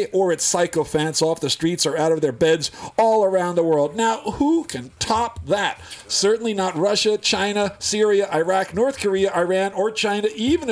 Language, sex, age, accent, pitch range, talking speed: English, male, 50-69, American, 150-205 Hz, 180 wpm